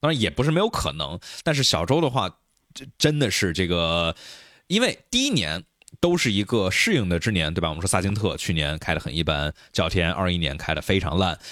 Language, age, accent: Chinese, 20-39, native